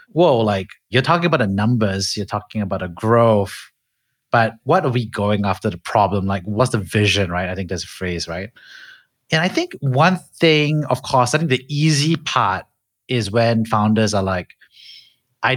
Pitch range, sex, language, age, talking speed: 100-130 Hz, male, English, 30-49, 190 wpm